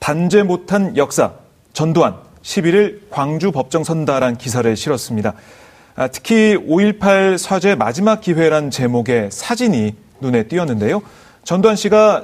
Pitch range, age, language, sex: 125-190 Hz, 30-49, Korean, male